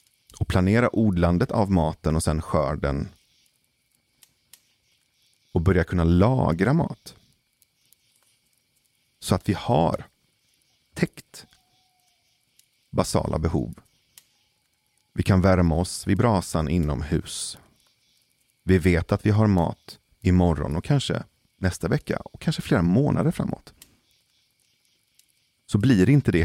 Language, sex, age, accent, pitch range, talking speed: Swedish, male, 40-59, native, 80-105 Hz, 105 wpm